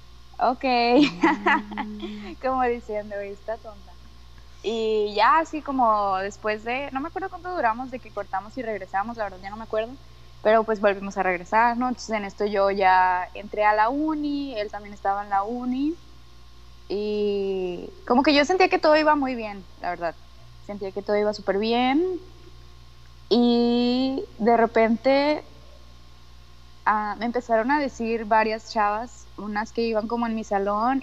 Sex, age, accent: female, 20-39, Mexican